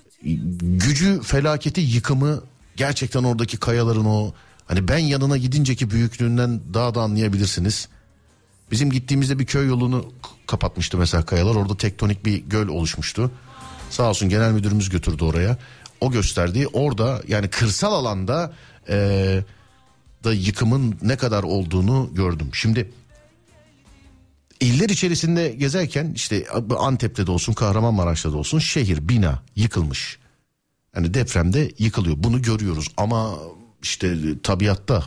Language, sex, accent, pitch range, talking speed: Turkish, male, native, 90-120 Hz, 120 wpm